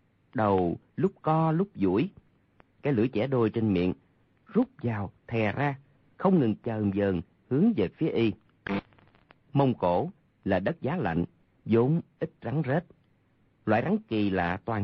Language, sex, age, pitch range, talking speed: Vietnamese, male, 40-59, 100-150 Hz, 155 wpm